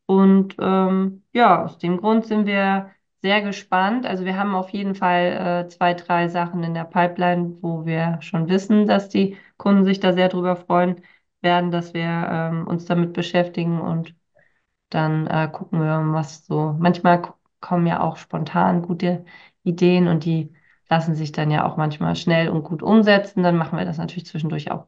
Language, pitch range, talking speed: German, 170-200 Hz, 180 wpm